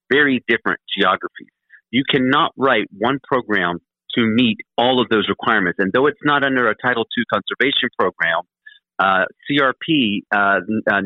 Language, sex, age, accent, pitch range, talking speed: English, male, 50-69, American, 110-135 Hz, 145 wpm